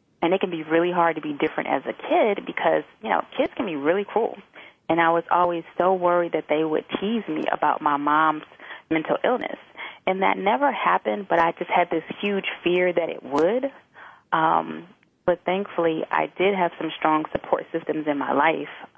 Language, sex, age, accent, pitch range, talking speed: English, female, 30-49, American, 155-180 Hz, 200 wpm